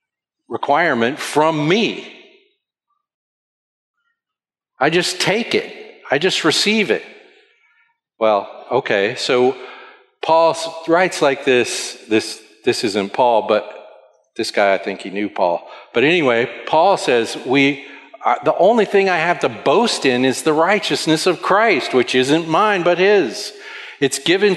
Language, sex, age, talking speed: English, male, 50-69, 135 wpm